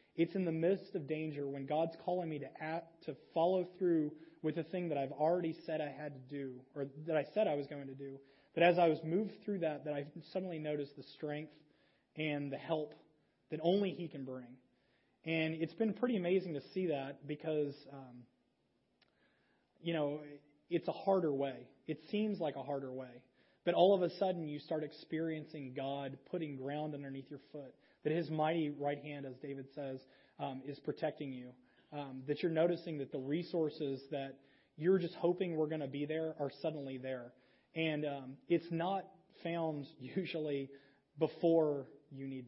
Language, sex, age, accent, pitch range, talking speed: English, male, 30-49, American, 140-165 Hz, 185 wpm